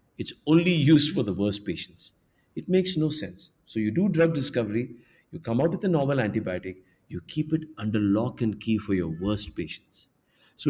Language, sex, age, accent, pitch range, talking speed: English, male, 50-69, Indian, 105-155 Hz, 195 wpm